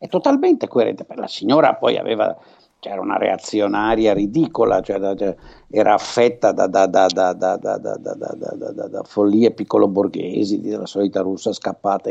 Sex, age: male, 60-79